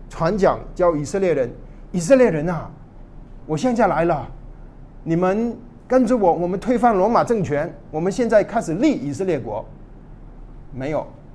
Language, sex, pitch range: Chinese, male, 130-200 Hz